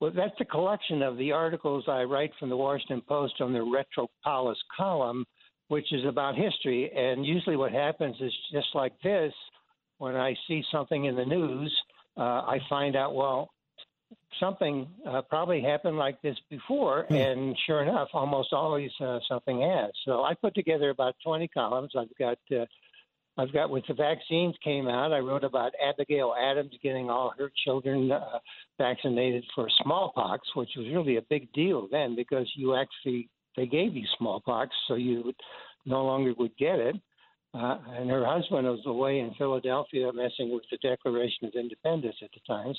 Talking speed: 175 wpm